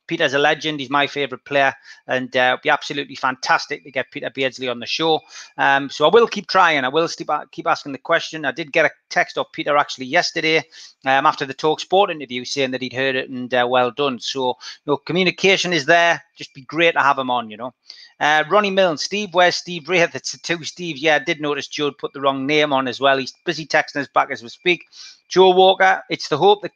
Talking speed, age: 235 wpm, 30-49